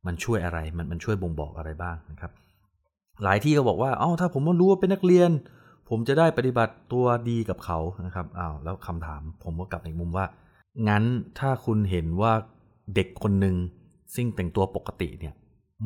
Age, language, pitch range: 20-39, Thai, 90-115 Hz